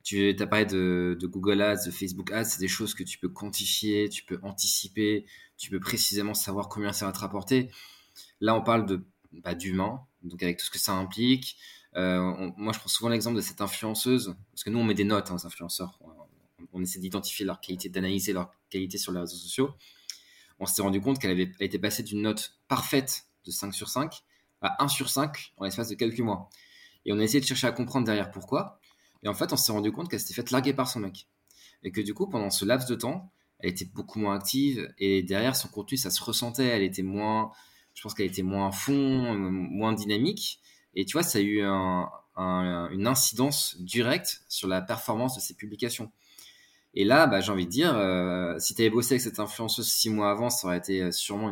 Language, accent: French, French